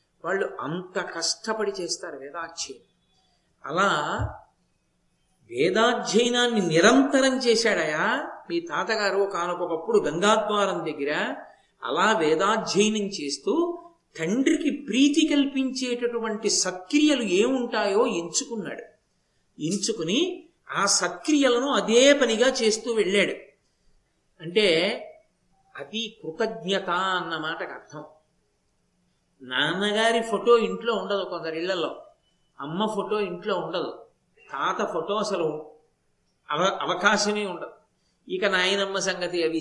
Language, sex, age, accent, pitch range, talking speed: Telugu, male, 50-69, native, 180-235 Hz, 80 wpm